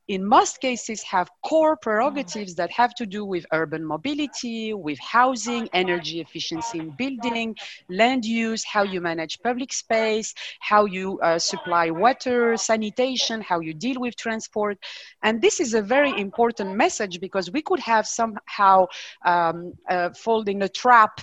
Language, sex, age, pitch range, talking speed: English, female, 40-59, 180-235 Hz, 155 wpm